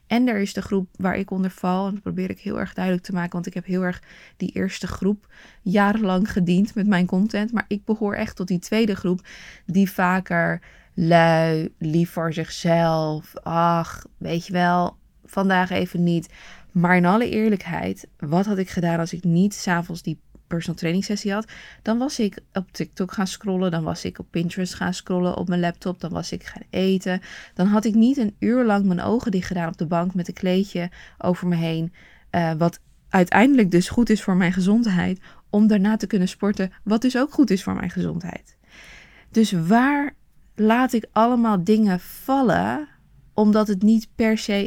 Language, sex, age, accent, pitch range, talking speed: Dutch, female, 20-39, Dutch, 175-210 Hz, 195 wpm